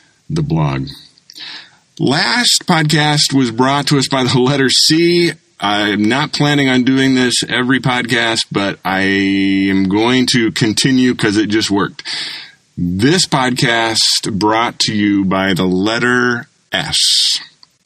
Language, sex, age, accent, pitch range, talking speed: English, male, 30-49, American, 95-135 Hz, 130 wpm